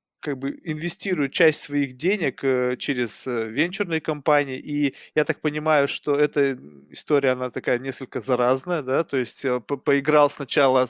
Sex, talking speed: male, 140 wpm